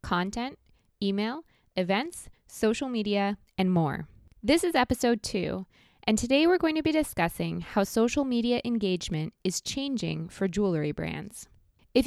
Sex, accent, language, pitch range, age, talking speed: female, American, English, 190-255 Hz, 20-39, 140 wpm